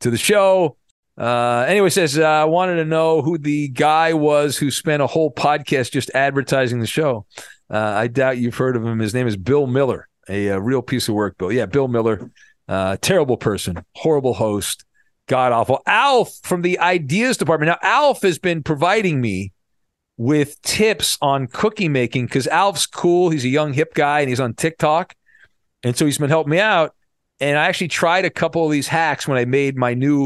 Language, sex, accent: English, male, American